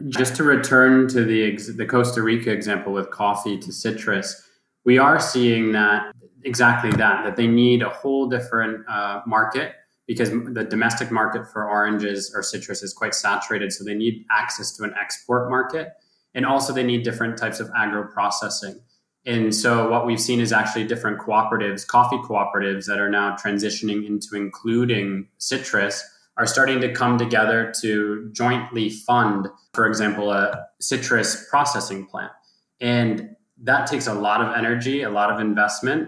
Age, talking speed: 20-39, 165 wpm